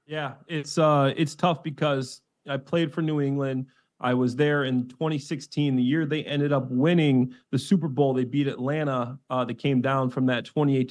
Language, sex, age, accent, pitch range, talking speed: English, male, 30-49, American, 140-170 Hz, 195 wpm